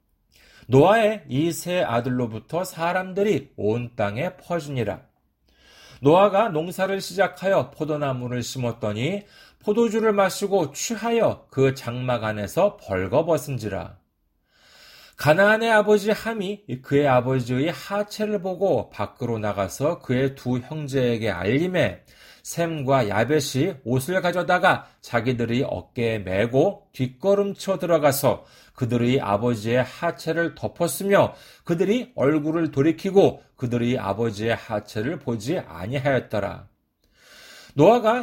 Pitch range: 120-185 Hz